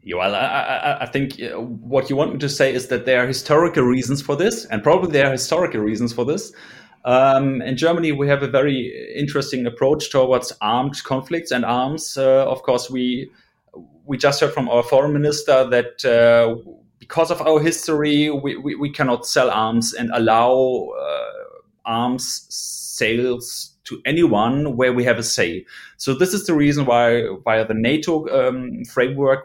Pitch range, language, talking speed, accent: 125-160 Hz, English, 175 wpm, German